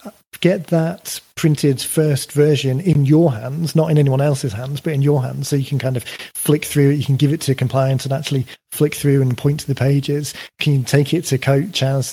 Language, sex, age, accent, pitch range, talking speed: English, male, 40-59, British, 130-150 Hz, 235 wpm